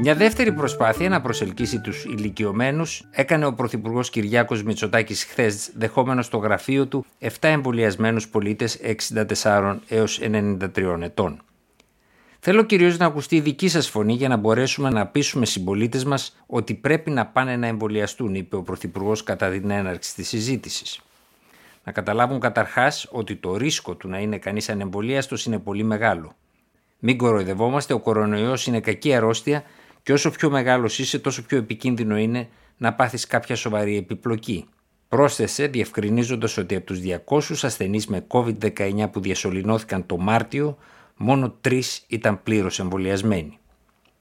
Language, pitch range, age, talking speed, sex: Greek, 105-135 Hz, 50-69, 145 wpm, male